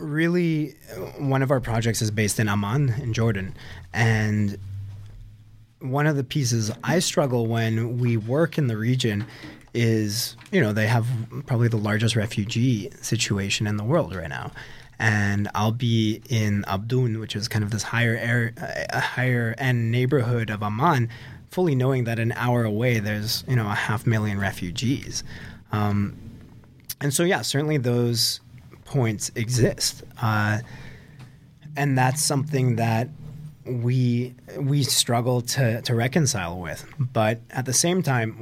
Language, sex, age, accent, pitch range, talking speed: English, male, 20-39, American, 110-130 Hz, 145 wpm